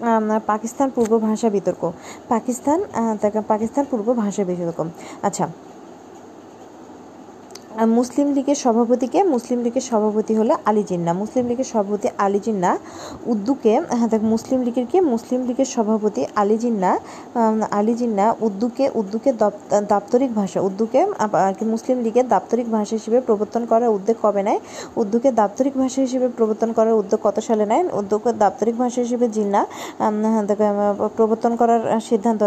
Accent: native